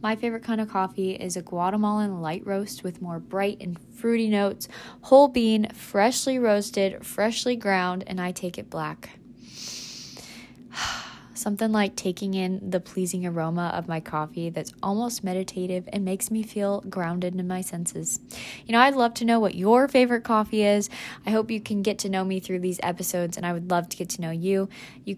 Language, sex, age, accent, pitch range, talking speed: English, female, 20-39, American, 185-225 Hz, 190 wpm